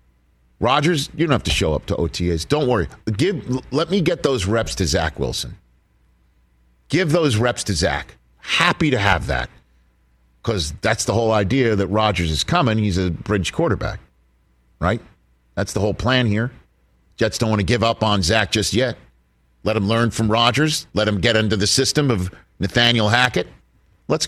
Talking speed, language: 180 wpm, English